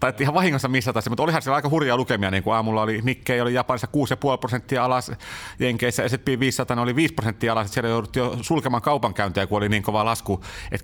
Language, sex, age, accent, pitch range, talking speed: Finnish, male, 30-49, native, 110-145 Hz, 210 wpm